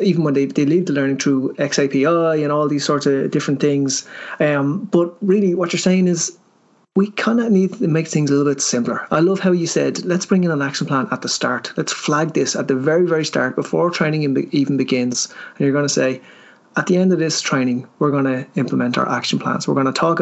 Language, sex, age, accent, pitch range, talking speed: English, male, 30-49, Irish, 140-175 Hz, 245 wpm